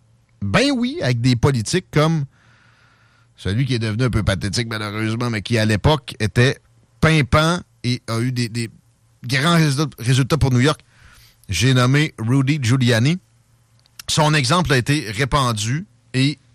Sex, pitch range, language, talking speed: male, 110-140 Hz, French, 145 wpm